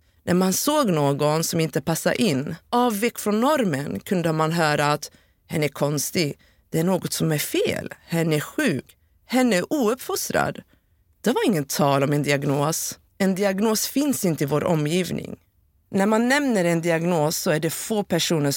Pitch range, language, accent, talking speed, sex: 150-225 Hz, Swedish, native, 175 wpm, female